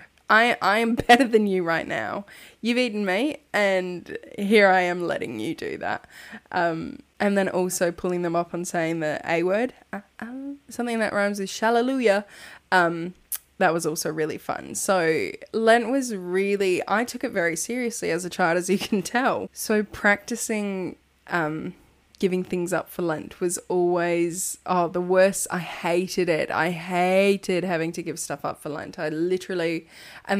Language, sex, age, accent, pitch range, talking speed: English, female, 20-39, Australian, 170-210 Hz, 170 wpm